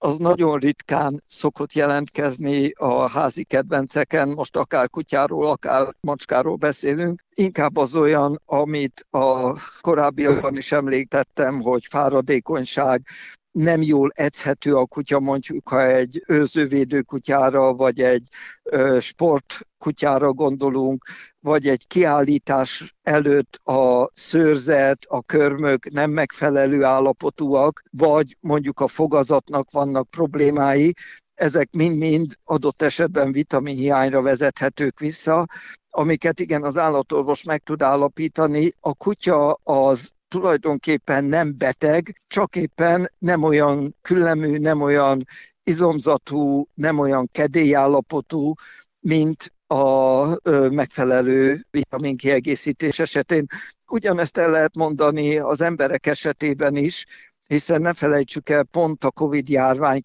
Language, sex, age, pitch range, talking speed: Hungarian, male, 50-69, 135-155 Hz, 110 wpm